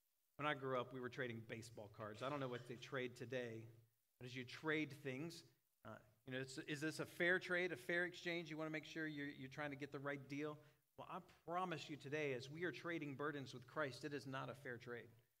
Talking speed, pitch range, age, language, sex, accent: 245 wpm, 125-160 Hz, 40-59, English, male, American